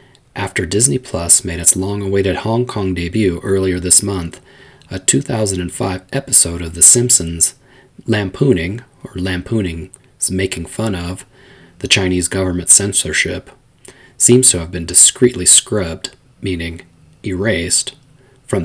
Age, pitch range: 30-49, 90-120 Hz